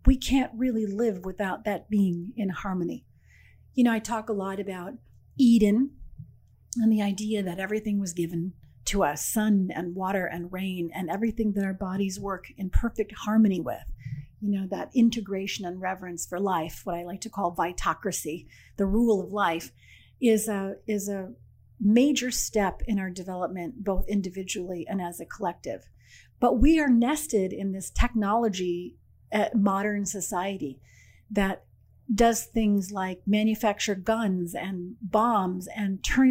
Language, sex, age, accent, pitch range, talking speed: English, female, 40-59, American, 185-220 Hz, 155 wpm